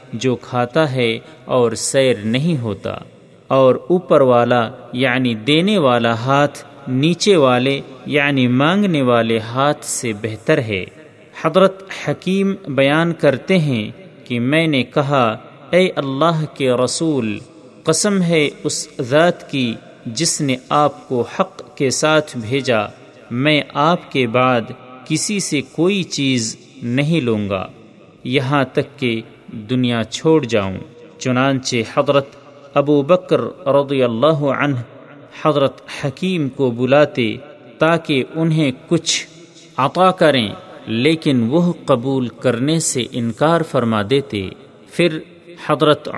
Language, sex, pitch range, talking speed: Urdu, male, 125-160 Hz, 120 wpm